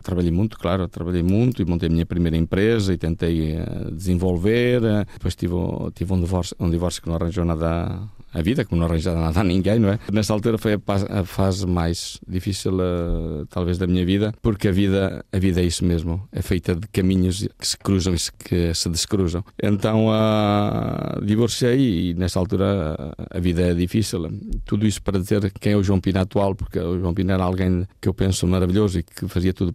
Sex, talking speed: male, 200 wpm